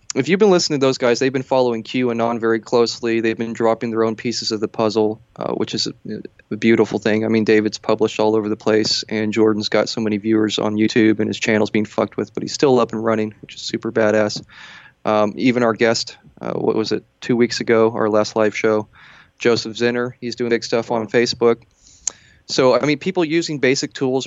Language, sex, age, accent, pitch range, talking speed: English, male, 20-39, American, 110-125 Hz, 225 wpm